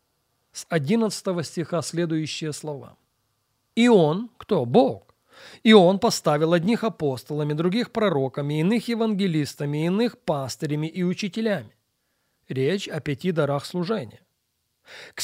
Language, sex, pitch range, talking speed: English, male, 150-215 Hz, 110 wpm